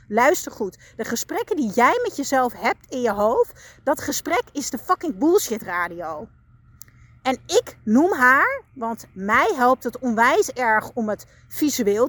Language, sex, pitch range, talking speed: Dutch, female, 220-290 Hz, 160 wpm